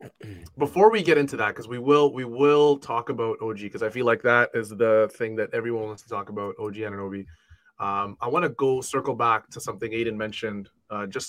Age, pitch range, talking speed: 20-39, 110-145 Hz, 235 wpm